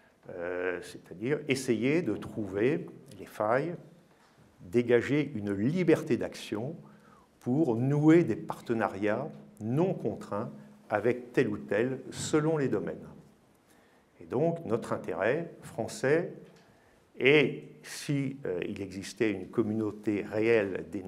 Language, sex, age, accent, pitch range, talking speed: French, male, 50-69, French, 105-165 Hz, 100 wpm